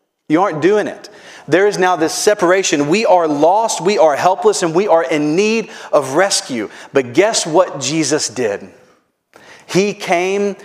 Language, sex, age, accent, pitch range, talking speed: English, male, 40-59, American, 155-205 Hz, 165 wpm